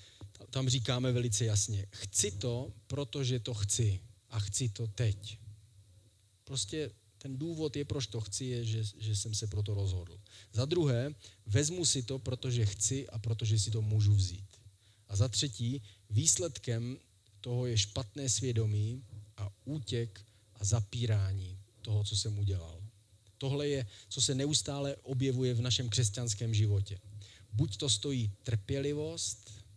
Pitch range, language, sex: 105-130 Hz, Czech, male